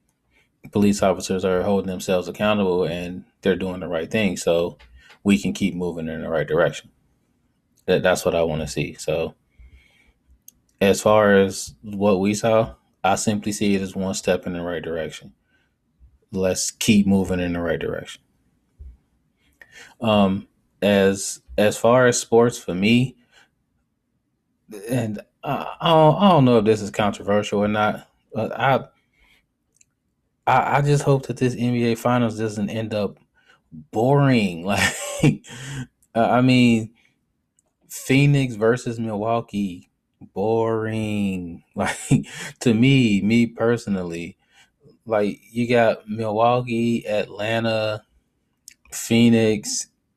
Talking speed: 125 wpm